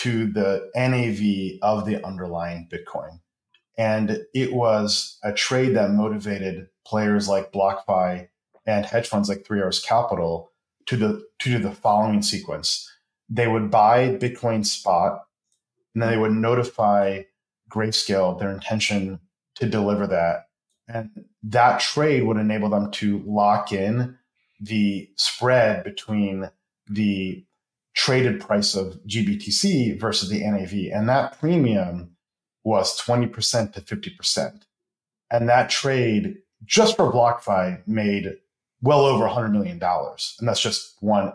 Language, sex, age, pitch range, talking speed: English, male, 30-49, 100-120 Hz, 125 wpm